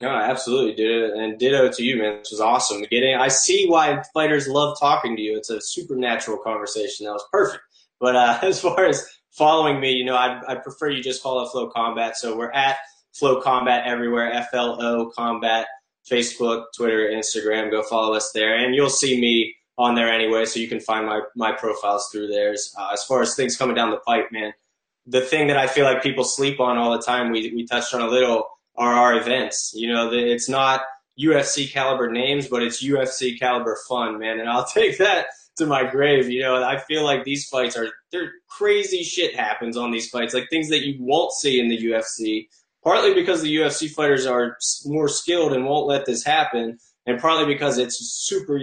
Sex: male